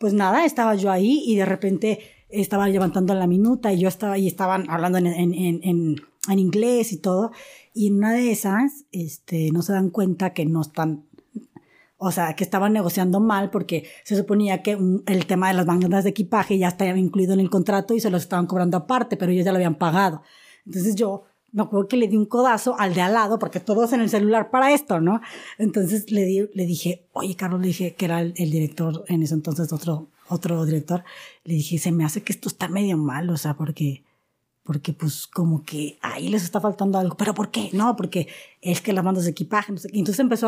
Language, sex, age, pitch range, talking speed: Spanish, female, 20-39, 180-220 Hz, 225 wpm